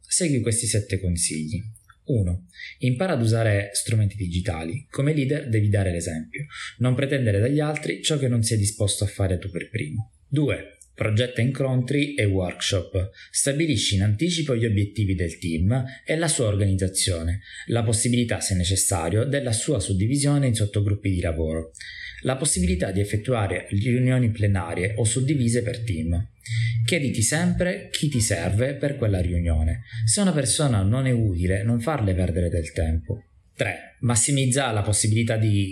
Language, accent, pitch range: Italian, native, 95-130 Hz